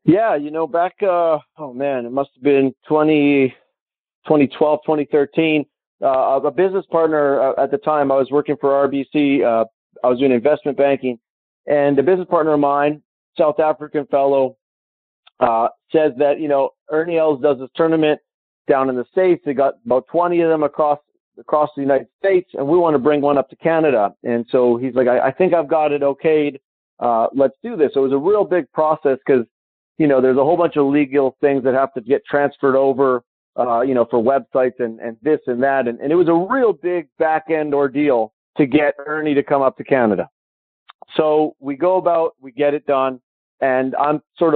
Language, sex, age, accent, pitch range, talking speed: English, male, 40-59, American, 135-155 Hz, 205 wpm